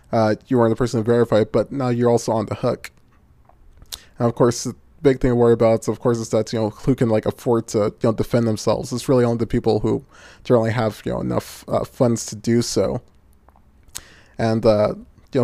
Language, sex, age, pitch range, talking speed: English, male, 20-39, 105-125 Hz, 225 wpm